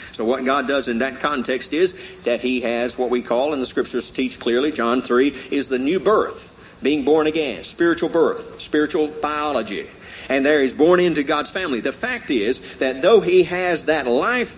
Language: English